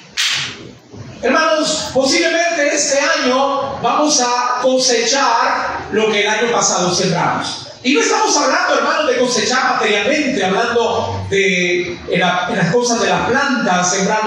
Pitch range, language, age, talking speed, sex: 220-295 Hz, Spanish, 40-59, 140 wpm, male